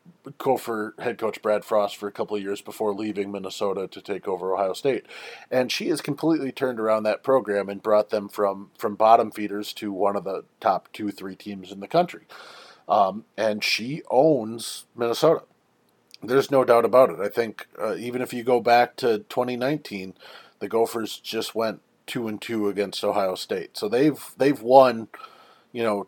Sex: male